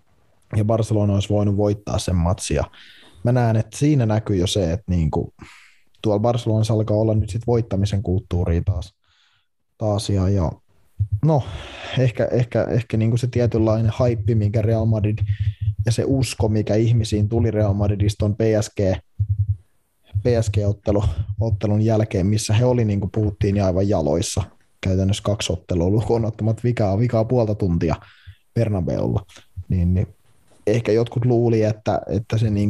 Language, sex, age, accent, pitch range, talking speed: Finnish, male, 20-39, native, 100-115 Hz, 145 wpm